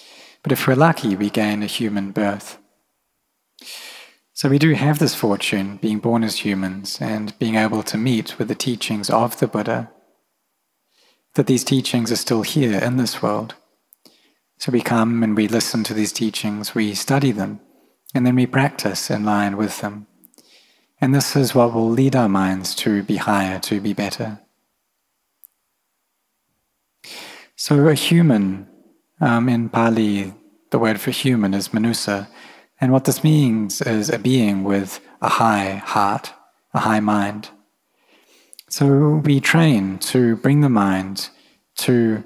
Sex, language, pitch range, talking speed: male, English, 105-130 Hz, 150 wpm